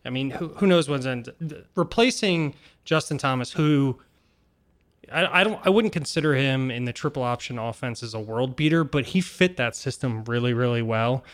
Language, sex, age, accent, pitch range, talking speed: English, male, 20-39, American, 120-145 Hz, 185 wpm